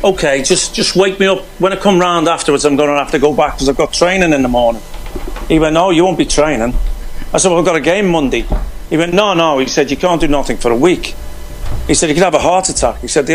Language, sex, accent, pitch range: English, male, British, 125-165 Hz